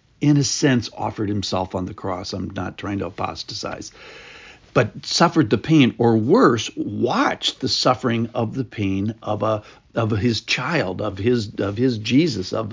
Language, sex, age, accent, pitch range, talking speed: English, male, 60-79, American, 110-150 Hz, 170 wpm